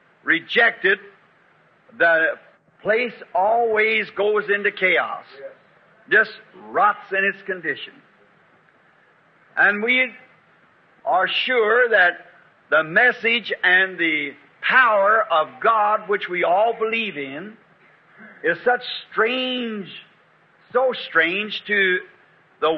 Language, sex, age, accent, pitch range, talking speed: English, male, 50-69, American, 190-235 Hz, 95 wpm